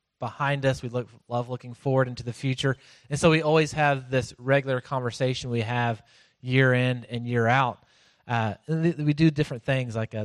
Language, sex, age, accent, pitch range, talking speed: English, male, 30-49, American, 115-135 Hz, 180 wpm